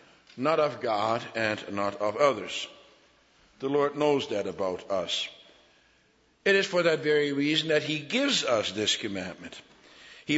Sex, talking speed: male, 150 wpm